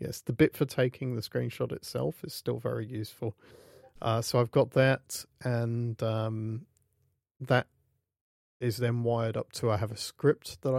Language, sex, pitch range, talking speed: English, male, 105-120 Hz, 165 wpm